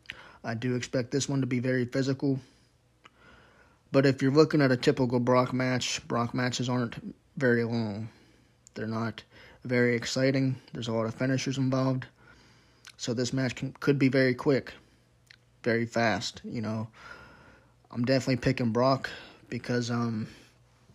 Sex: male